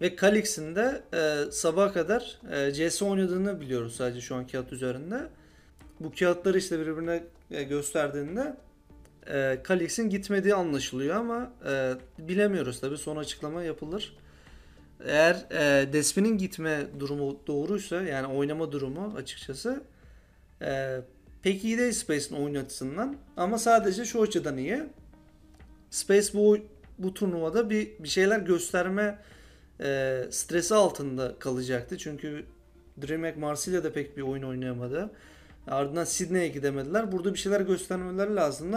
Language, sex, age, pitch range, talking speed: Turkish, male, 40-59, 140-195 Hz, 125 wpm